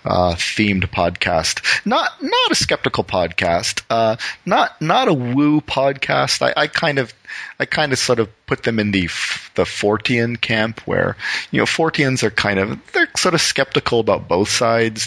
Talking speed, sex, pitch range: 180 wpm, male, 90-115 Hz